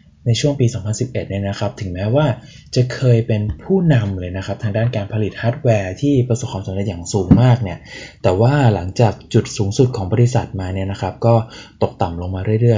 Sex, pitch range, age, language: male, 105-130 Hz, 20-39, Thai